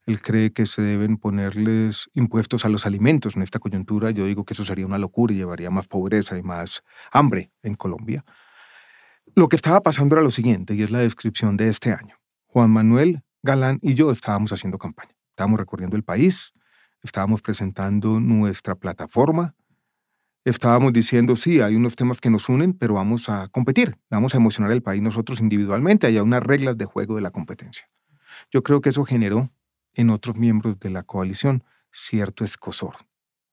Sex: male